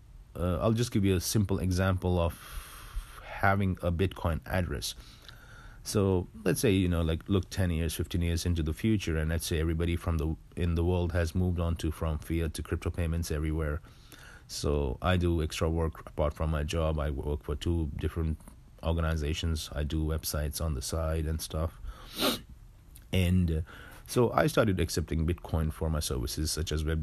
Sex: male